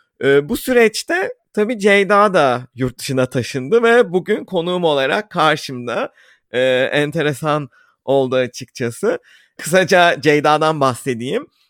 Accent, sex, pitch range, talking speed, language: native, male, 130-170 Hz, 110 wpm, Turkish